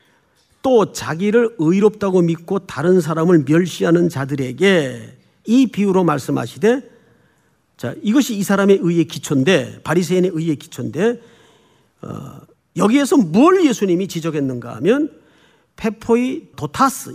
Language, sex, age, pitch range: Korean, male, 40-59, 160-260 Hz